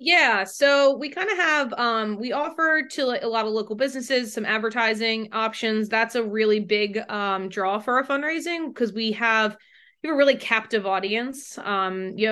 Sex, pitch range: female, 200-235 Hz